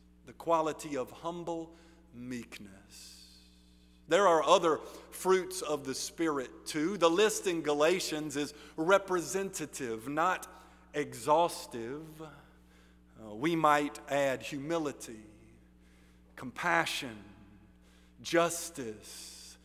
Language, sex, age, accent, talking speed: English, male, 50-69, American, 80 wpm